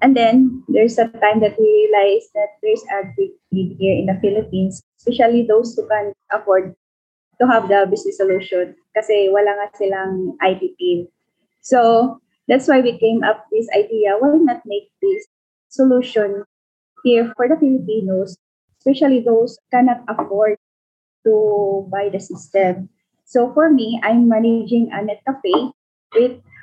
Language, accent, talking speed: Filipino, native, 150 wpm